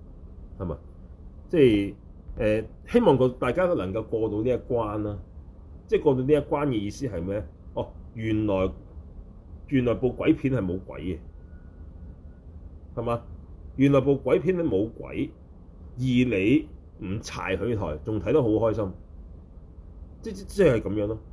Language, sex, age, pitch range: Chinese, male, 30-49, 85-130 Hz